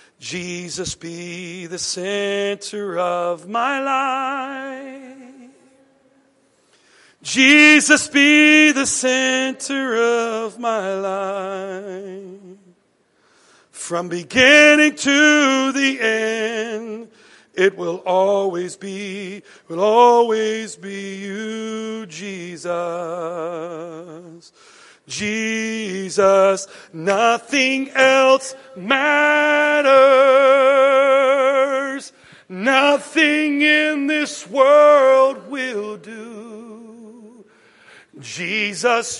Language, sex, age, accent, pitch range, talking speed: English, male, 40-59, American, 195-270 Hz, 60 wpm